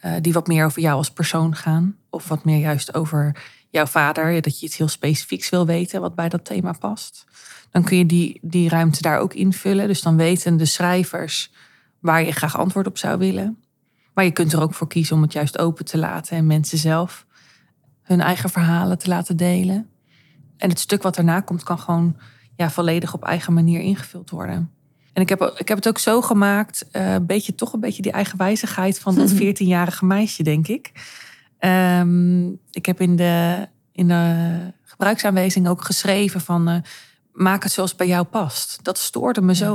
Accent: Dutch